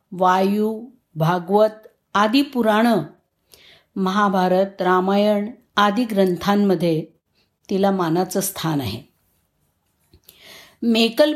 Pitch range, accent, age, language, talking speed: 185-245 Hz, native, 50-69, Marathi, 70 wpm